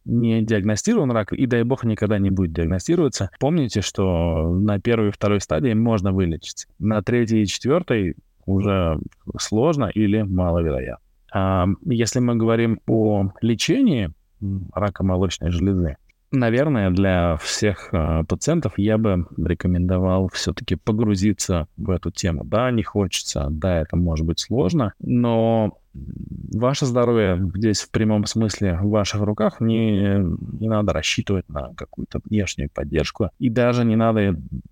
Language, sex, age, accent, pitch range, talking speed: Russian, male, 20-39, native, 90-115 Hz, 135 wpm